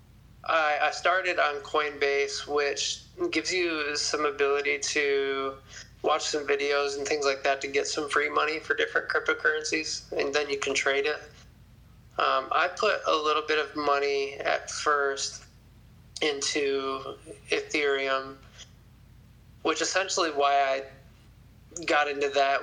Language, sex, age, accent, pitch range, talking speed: English, male, 20-39, American, 130-150 Hz, 135 wpm